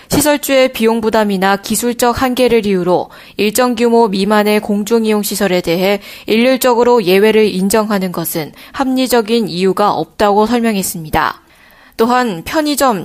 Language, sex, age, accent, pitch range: Korean, female, 20-39, native, 205-255 Hz